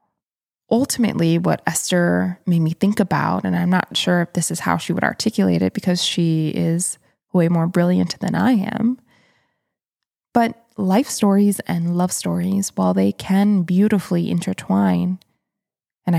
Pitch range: 170-215 Hz